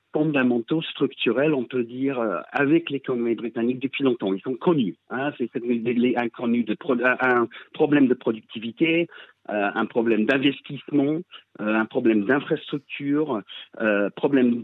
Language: French